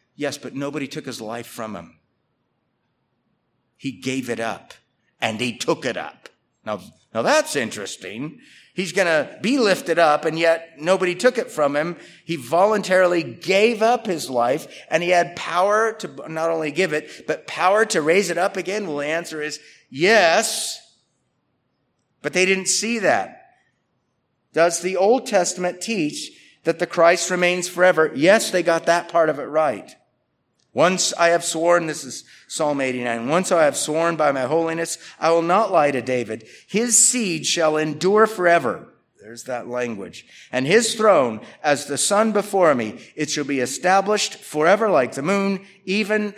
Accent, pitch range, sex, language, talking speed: American, 140-190 Hz, male, English, 170 wpm